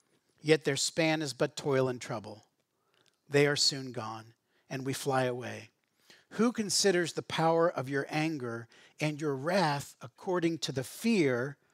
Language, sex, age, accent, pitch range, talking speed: English, male, 40-59, American, 130-160 Hz, 155 wpm